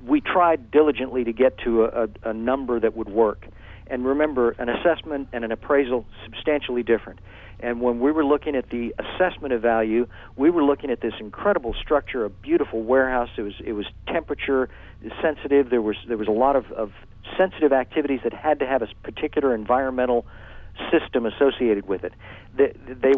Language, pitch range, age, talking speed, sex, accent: English, 115-155 Hz, 50-69, 180 wpm, male, American